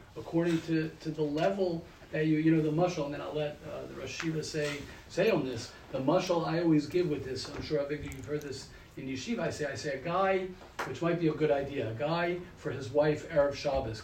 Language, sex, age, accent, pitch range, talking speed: English, male, 40-59, American, 140-180 Hz, 245 wpm